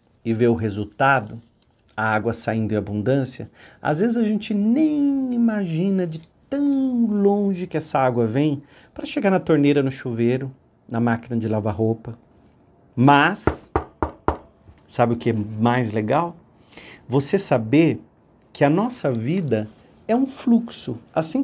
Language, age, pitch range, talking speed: Portuguese, 40-59, 120-185 Hz, 140 wpm